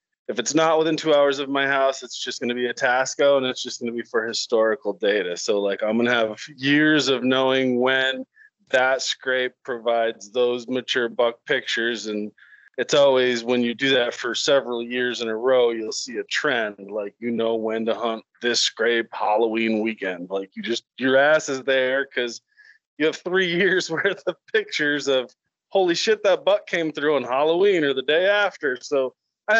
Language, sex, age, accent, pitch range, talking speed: English, male, 20-39, American, 115-145 Hz, 200 wpm